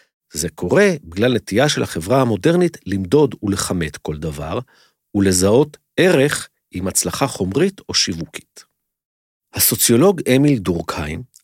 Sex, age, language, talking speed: male, 50-69, Hebrew, 110 wpm